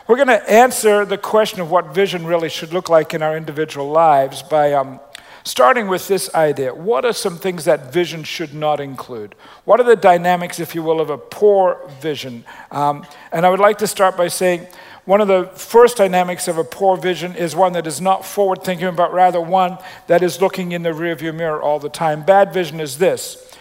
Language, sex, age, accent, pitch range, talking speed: English, male, 50-69, American, 160-205 Hz, 215 wpm